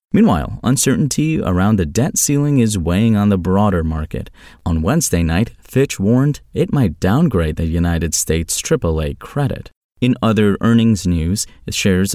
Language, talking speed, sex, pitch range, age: English, 150 wpm, male, 85-115 Hz, 30-49